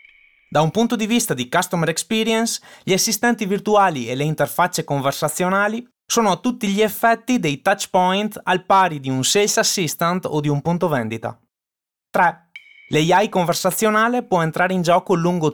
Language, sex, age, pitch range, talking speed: Italian, male, 20-39, 150-210 Hz, 160 wpm